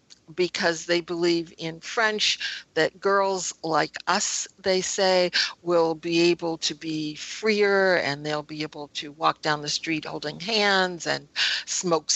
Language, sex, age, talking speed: English, female, 60-79, 150 wpm